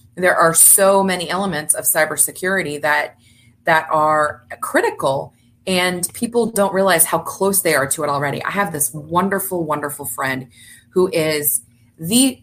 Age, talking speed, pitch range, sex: 30-49, 150 wpm, 145-195 Hz, female